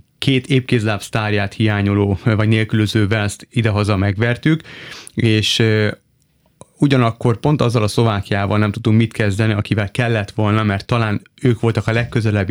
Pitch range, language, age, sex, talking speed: 105-120 Hz, Hungarian, 30-49, male, 130 wpm